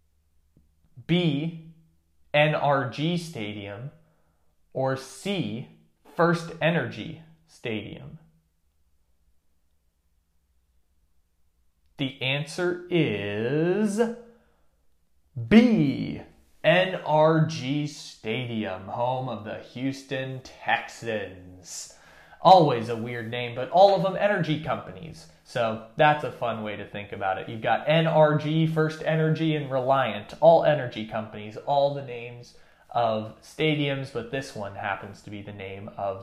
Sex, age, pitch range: male, 20-39, 95-155 Hz